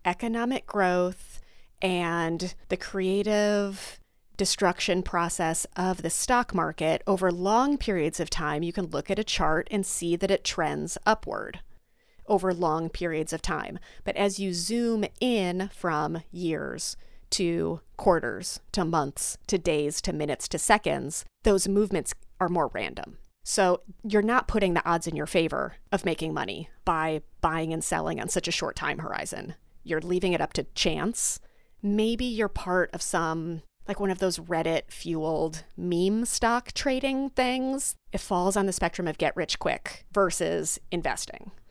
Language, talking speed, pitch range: English, 155 wpm, 170-205 Hz